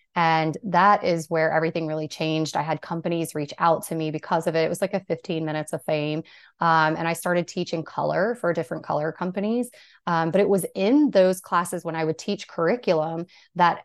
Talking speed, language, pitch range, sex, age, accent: 210 wpm, English, 160-185 Hz, female, 30-49, American